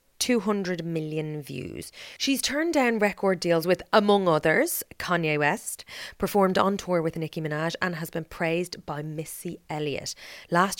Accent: Irish